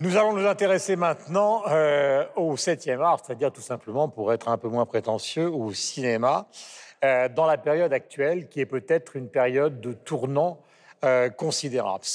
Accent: French